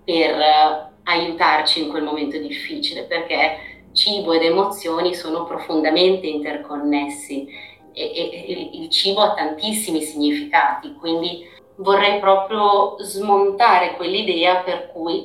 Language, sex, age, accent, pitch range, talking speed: Italian, female, 30-49, native, 160-205 Hz, 110 wpm